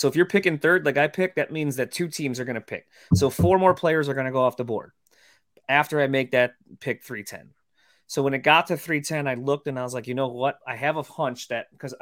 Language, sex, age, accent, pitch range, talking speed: English, male, 30-49, American, 115-145 Hz, 275 wpm